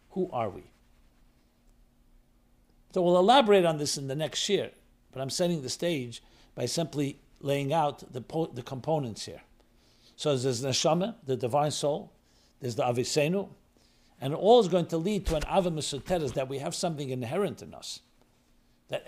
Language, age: English, 60-79